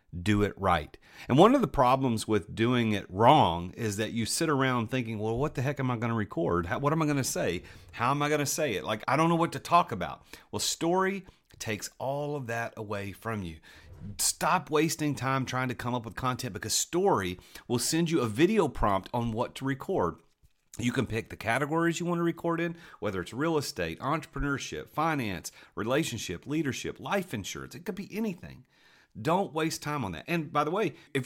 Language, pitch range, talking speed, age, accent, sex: English, 110-150 Hz, 215 wpm, 40-59, American, male